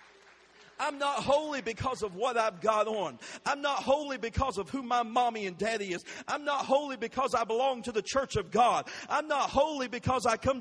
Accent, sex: American, male